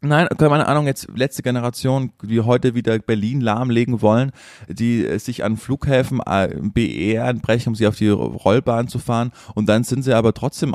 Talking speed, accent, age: 185 wpm, German, 20-39